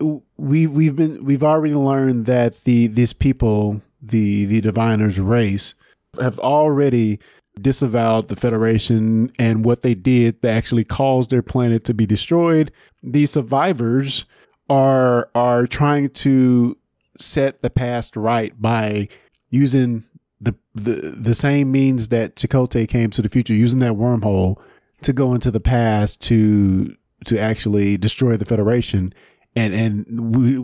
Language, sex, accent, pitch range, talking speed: English, male, American, 115-135 Hz, 140 wpm